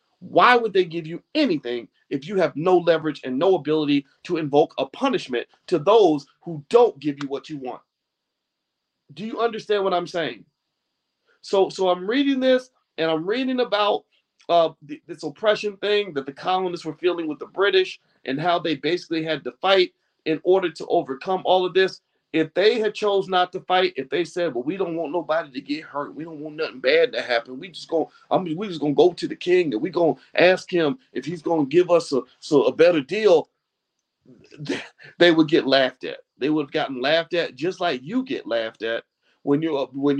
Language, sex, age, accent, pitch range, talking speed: English, male, 40-59, American, 145-200 Hz, 210 wpm